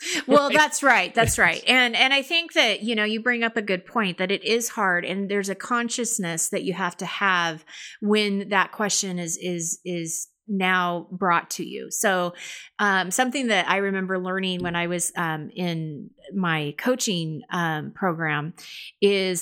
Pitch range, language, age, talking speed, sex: 170-205 Hz, English, 30-49, 180 wpm, female